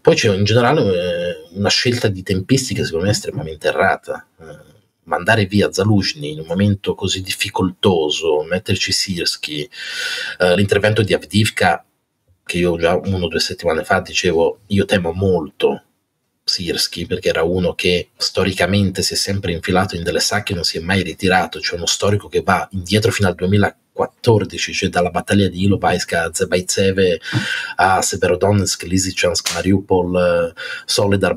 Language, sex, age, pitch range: Italian, male, 30-49, 90-105 Hz